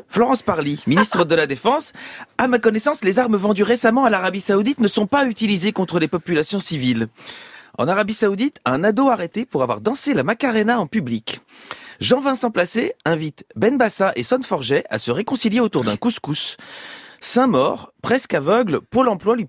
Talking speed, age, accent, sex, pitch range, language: 180 wpm, 30-49, French, male, 180-255 Hz, French